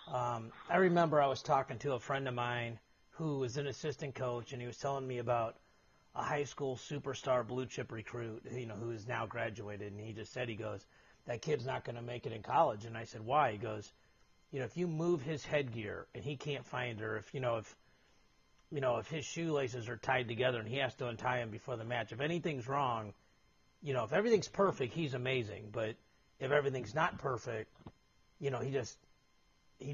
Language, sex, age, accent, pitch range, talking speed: English, male, 40-59, American, 120-155 Hz, 220 wpm